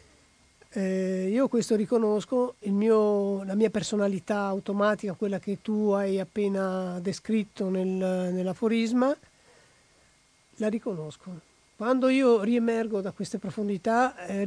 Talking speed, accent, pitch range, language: 100 wpm, native, 195-235 Hz, Italian